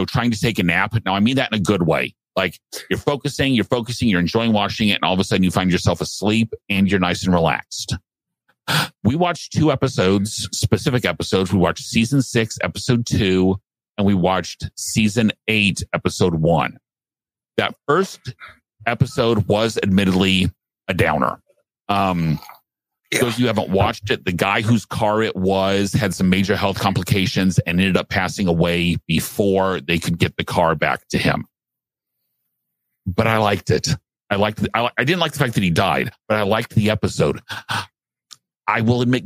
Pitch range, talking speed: 95-115 Hz, 185 wpm